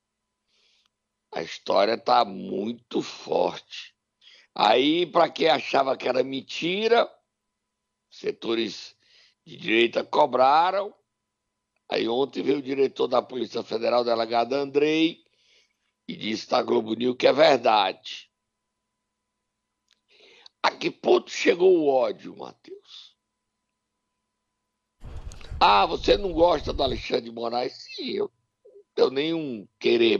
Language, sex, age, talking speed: Portuguese, male, 60-79, 105 wpm